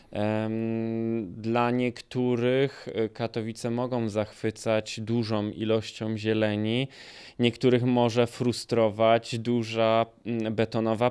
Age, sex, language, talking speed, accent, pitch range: 20-39, male, Polish, 70 wpm, native, 110-125 Hz